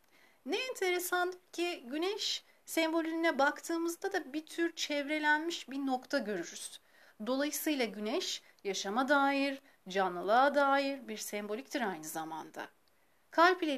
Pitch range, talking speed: 230-330 Hz, 105 wpm